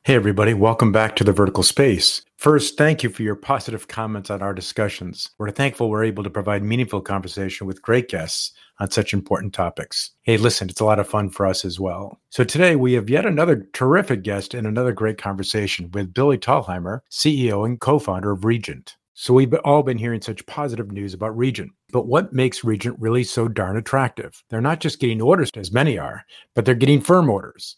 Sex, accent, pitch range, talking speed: male, American, 105-130 Hz, 205 wpm